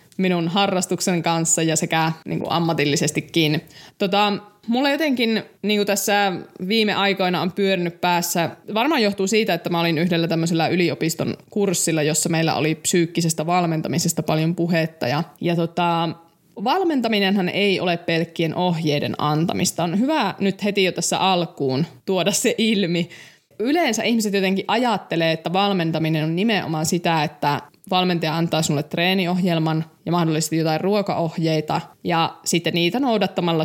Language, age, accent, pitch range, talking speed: Finnish, 20-39, native, 160-195 Hz, 135 wpm